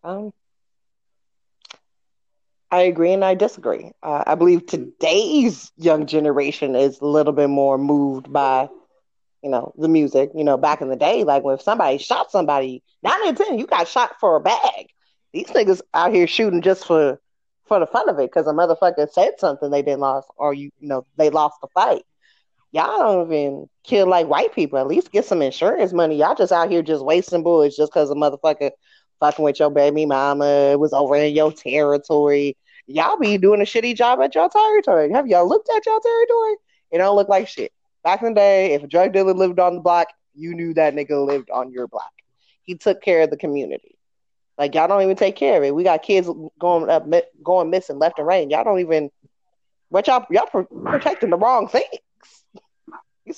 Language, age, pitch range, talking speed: English, 20-39, 145-200 Hz, 205 wpm